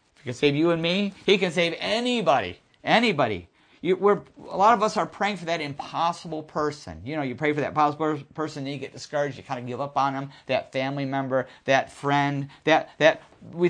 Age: 50-69